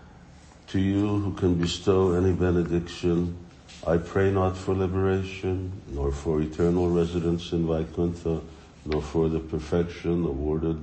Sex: male